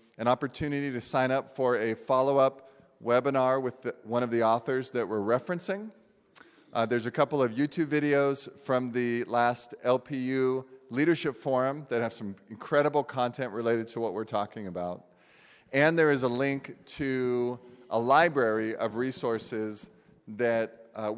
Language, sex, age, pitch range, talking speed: English, male, 40-59, 115-140 Hz, 150 wpm